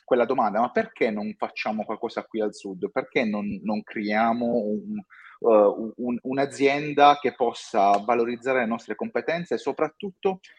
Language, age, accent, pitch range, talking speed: Italian, 30-49, native, 105-140 Hz, 145 wpm